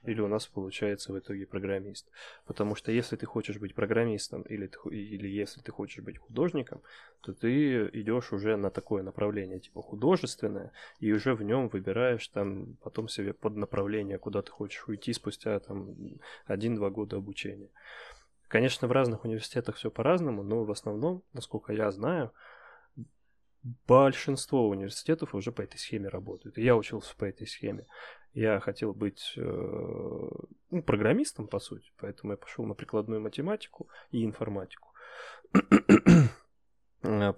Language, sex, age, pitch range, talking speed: Russian, male, 20-39, 100-125 Hz, 140 wpm